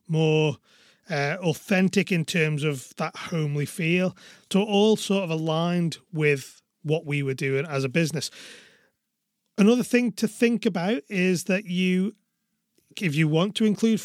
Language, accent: English, British